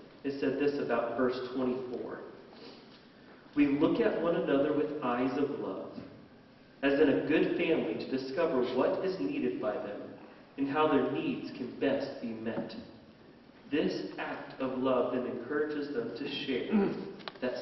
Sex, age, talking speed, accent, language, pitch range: male, 40-59, 155 wpm, American, English, 125-155 Hz